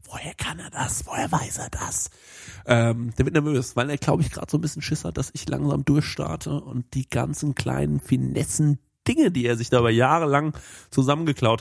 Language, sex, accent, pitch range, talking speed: German, male, German, 120-150 Hz, 195 wpm